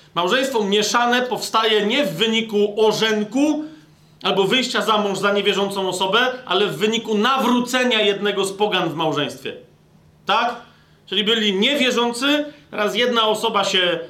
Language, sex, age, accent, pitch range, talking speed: Polish, male, 40-59, native, 185-235 Hz, 130 wpm